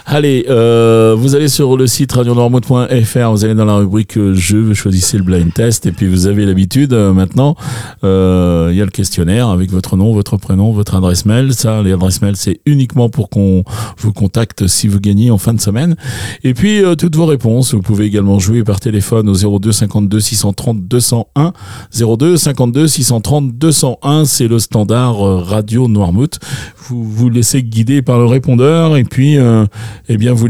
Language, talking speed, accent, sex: French, 195 wpm, French, male